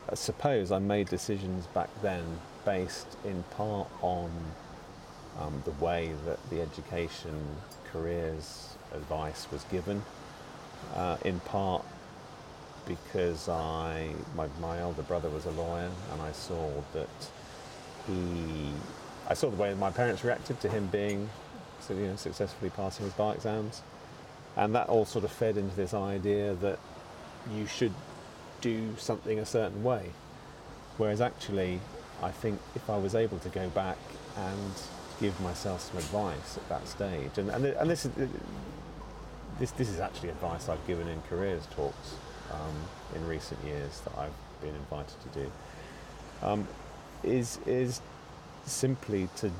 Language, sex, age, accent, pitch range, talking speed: English, male, 40-59, British, 85-105 Hz, 150 wpm